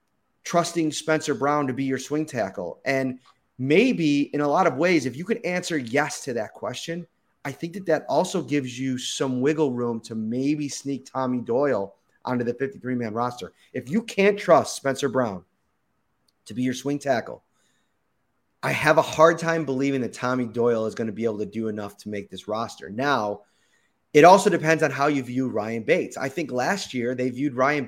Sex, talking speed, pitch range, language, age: male, 195 wpm, 130-185 Hz, English, 30-49